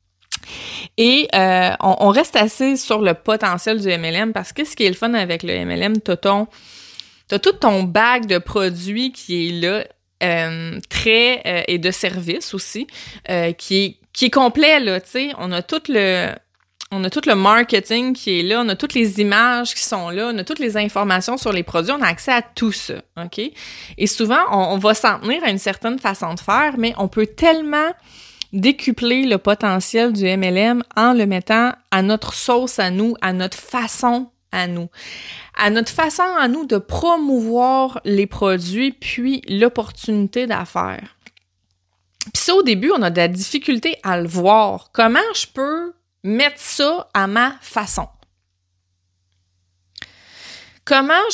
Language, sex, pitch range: French, female, 185-250 Hz